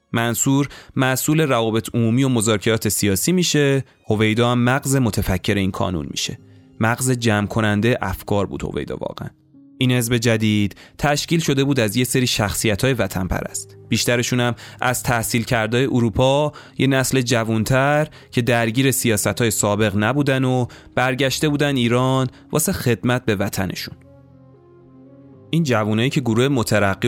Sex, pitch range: male, 110-135 Hz